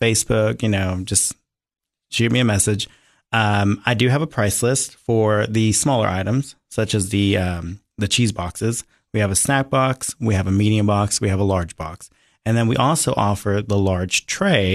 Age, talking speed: 30-49, 200 wpm